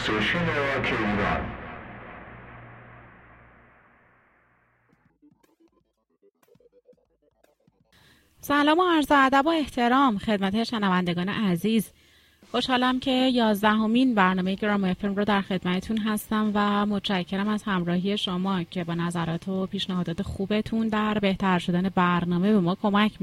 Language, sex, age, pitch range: Persian, female, 30-49, 185-230 Hz